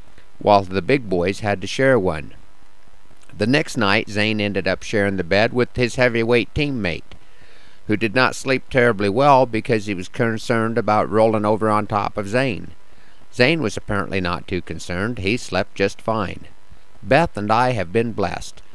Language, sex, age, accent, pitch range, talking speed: English, male, 50-69, American, 100-120 Hz, 175 wpm